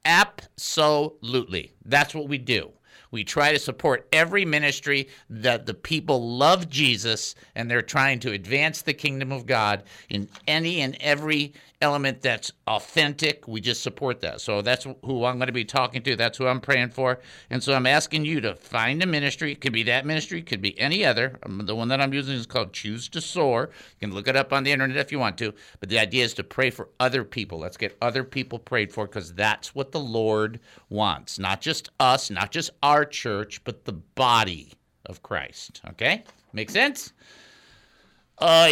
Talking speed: 200 wpm